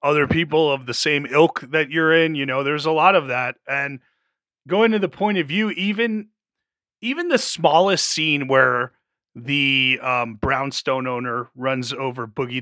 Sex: male